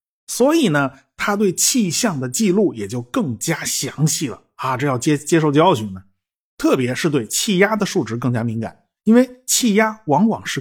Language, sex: Chinese, male